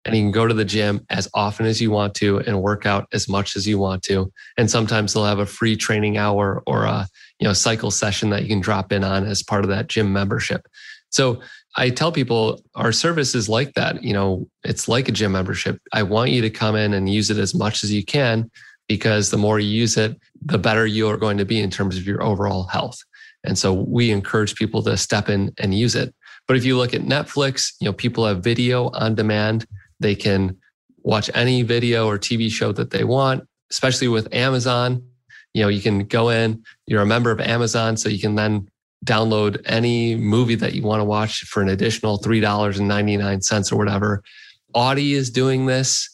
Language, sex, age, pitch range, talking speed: English, male, 30-49, 105-120 Hz, 225 wpm